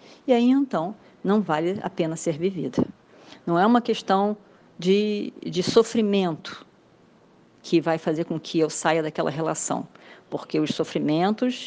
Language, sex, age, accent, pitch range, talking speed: Portuguese, female, 40-59, Brazilian, 165-205 Hz, 145 wpm